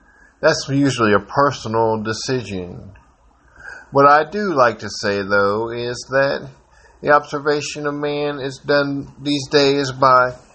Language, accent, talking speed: English, American, 130 wpm